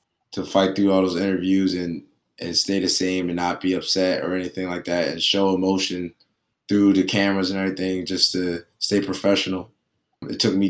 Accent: American